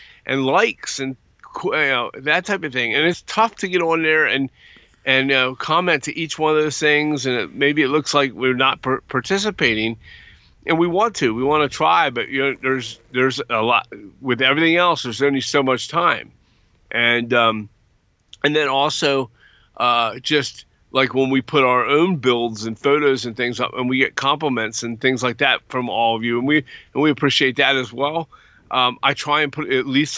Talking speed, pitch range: 195 wpm, 120-145 Hz